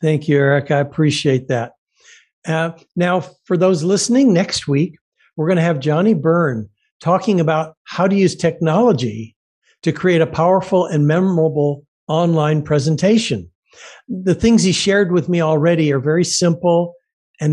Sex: male